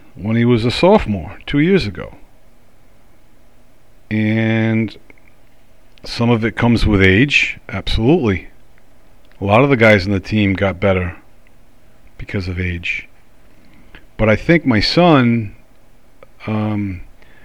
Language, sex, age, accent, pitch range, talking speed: English, male, 40-59, American, 95-115 Hz, 120 wpm